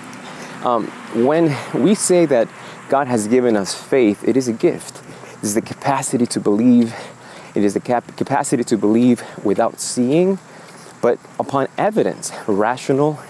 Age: 30-49